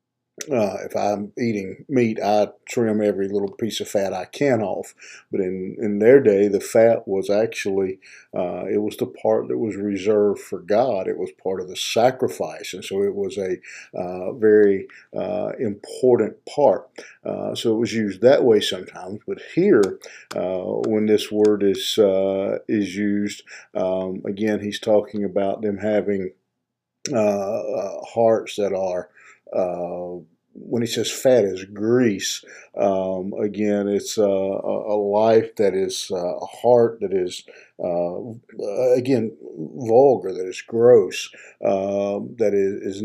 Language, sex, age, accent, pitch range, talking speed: English, male, 50-69, American, 100-125 Hz, 150 wpm